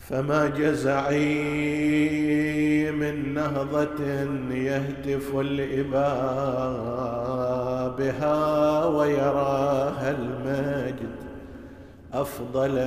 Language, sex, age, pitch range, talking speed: Arabic, male, 50-69, 125-145 Hz, 45 wpm